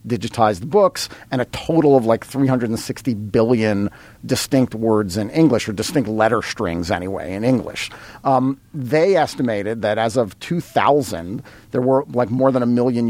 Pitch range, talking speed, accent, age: 110-150 Hz, 155 wpm, American, 40-59